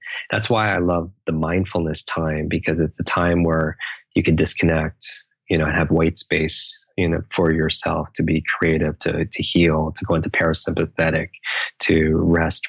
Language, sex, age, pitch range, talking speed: English, male, 20-39, 80-90 Hz, 170 wpm